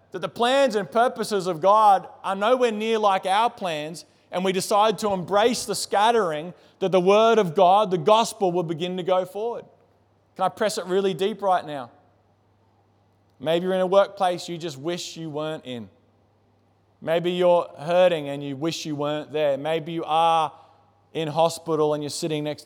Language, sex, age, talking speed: English, male, 20-39, 185 wpm